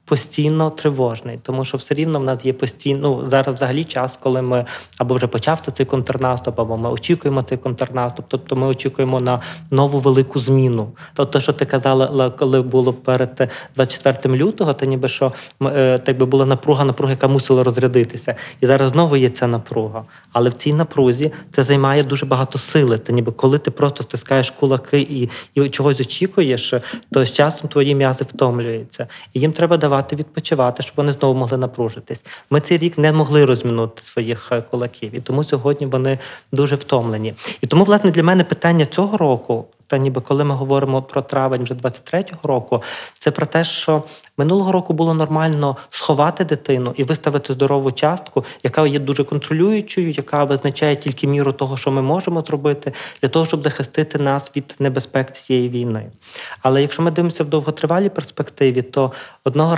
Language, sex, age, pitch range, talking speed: Ukrainian, male, 20-39, 130-150 Hz, 170 wpm